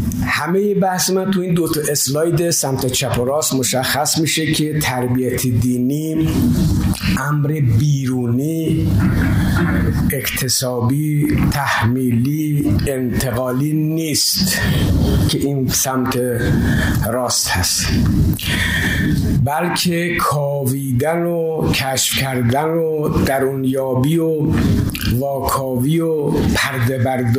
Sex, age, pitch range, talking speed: male, 60-79, 120-150 Hz, 85 wpm